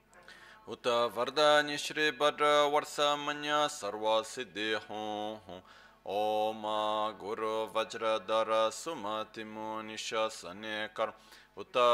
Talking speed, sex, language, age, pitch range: 80 wpm, male, Italian, 30-49, 110-145 Hz